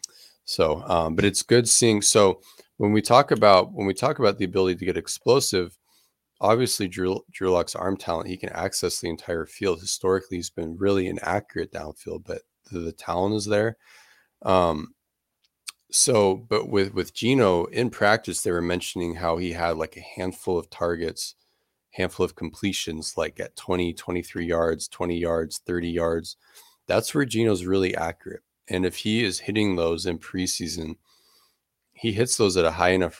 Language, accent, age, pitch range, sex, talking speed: English, American, 30-49, 85-100 Hz, male, 170 wpm